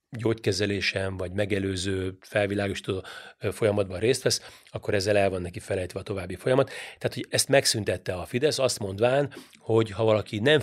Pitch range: 100-115 Hz